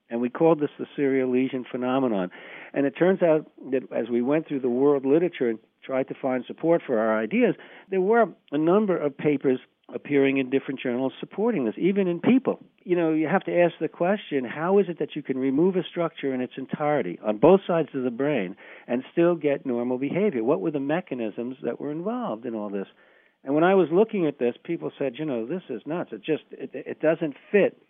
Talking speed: 225 wpm